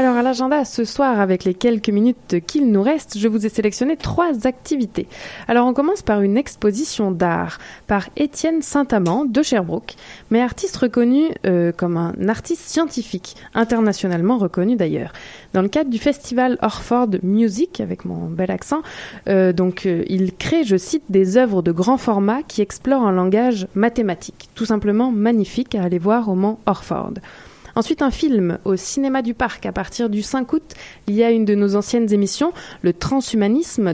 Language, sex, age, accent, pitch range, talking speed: French, female, 20-39, French, 195-250 Hz, 175 wpm